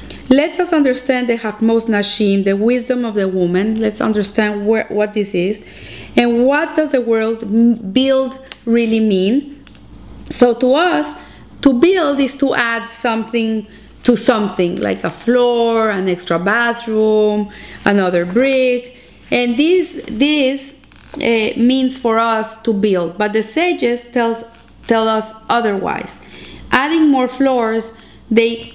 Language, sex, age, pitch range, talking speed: English, female, 30-49, 220-265 Hz, 135 wpm